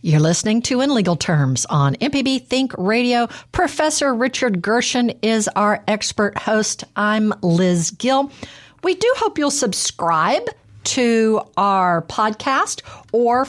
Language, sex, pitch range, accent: English, female, 180-250 Hz, American